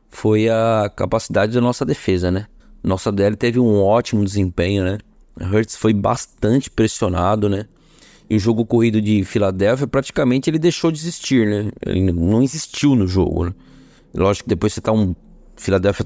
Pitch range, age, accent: 100-135 Hz, 20-39, Brazilian